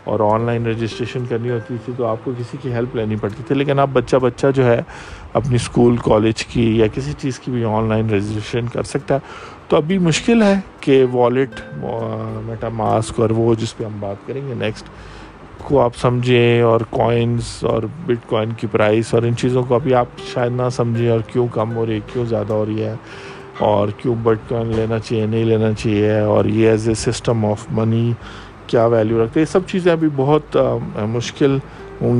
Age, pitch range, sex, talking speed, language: 50-69, 110-130 Hz, male, 205 wpm, Urdu